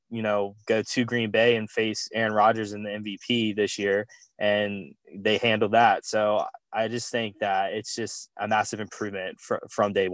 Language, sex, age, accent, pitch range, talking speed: English, male, 20-39, American, 105-120 Hz, 185 wpm